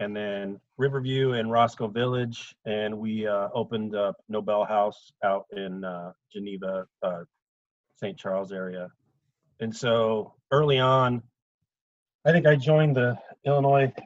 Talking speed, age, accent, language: 130 wpm, 30-49, American, English